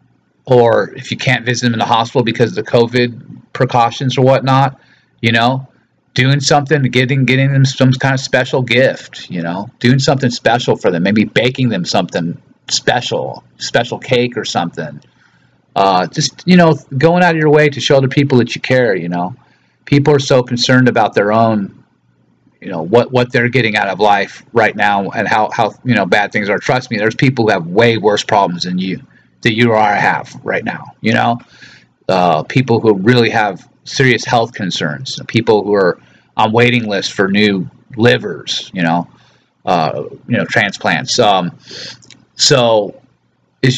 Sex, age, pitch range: male, 40-59, 110-135 Hz